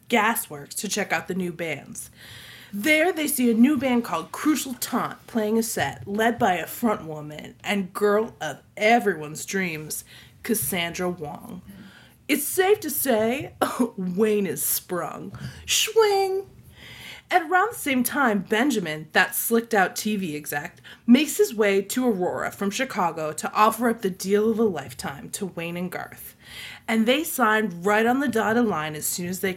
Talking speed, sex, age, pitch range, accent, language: 160 wpm, female, 20-39, 200-280 Hz, American, English